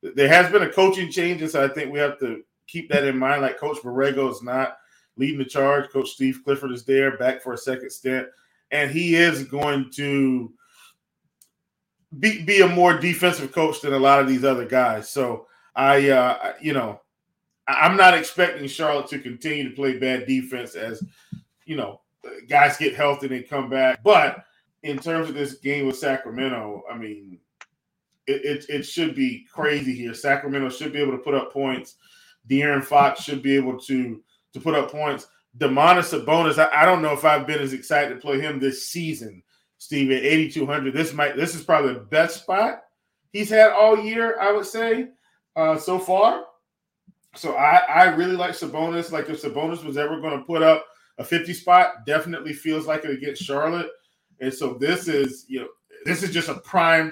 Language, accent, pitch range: English, American, 135-170 Hz